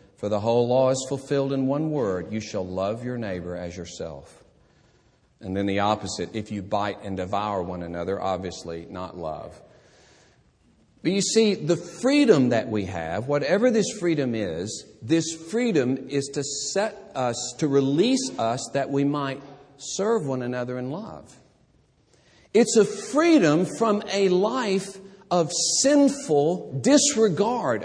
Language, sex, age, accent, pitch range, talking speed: English, male, 50-69, American, 120-175 Hz, 145 wpm